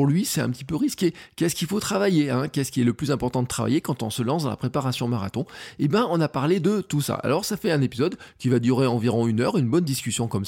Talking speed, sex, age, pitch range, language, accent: 285 wpm, male, 20-39, 115-155 Hz, French, French